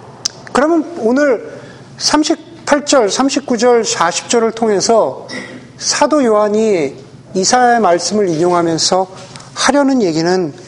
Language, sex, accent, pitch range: Korean, male, native, 180-265 Hz